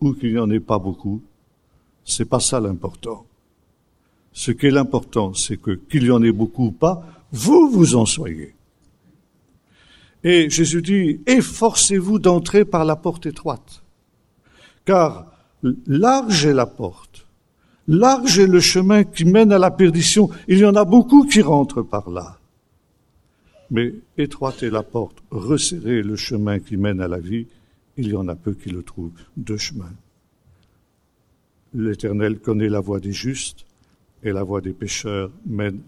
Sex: male